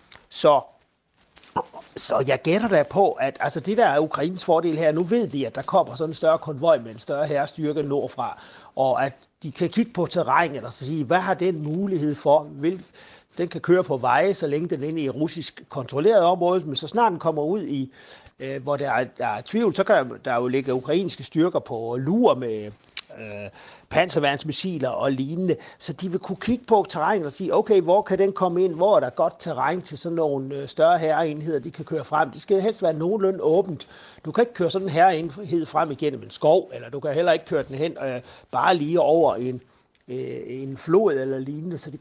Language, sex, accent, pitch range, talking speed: Danish, male, native, 140-185 Hz, 215 wpm